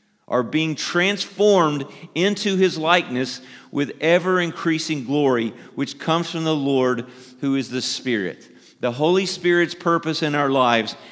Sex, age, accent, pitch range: male, 40-59, American, 120-155 Hz